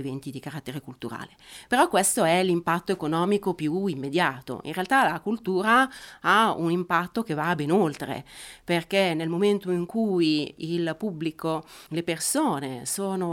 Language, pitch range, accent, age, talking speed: Italian, 150-180 Hz, native, 40-59, 145 wpm